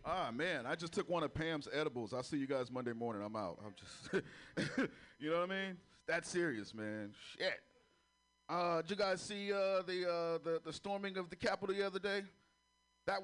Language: English